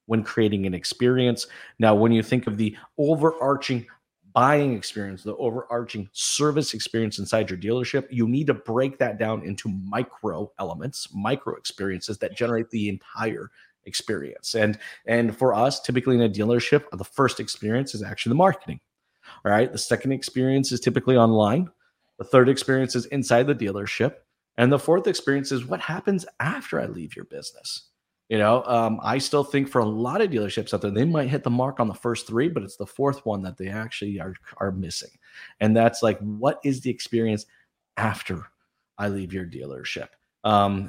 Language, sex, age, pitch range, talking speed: English, male, 30-49, 105-125 Hz, 180 wpm